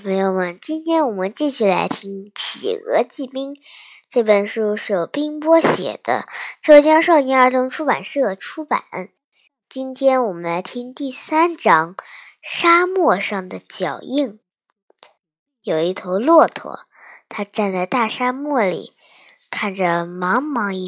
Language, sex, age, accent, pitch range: Chinese, male, 20-39, native, 200-315 Hz